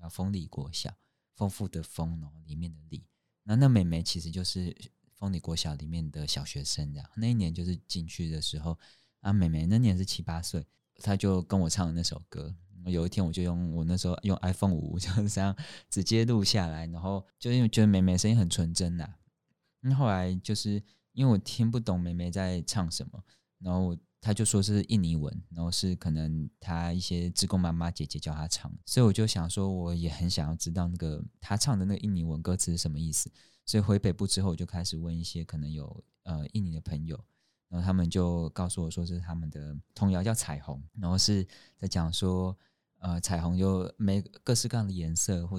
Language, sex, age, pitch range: Chinese, male, 20-39, 85-100 Hz